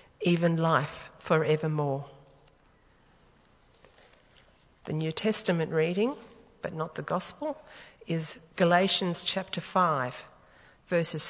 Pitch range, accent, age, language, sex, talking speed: 155-185 Hz, Australian, 50-69, English, female, 85 wpm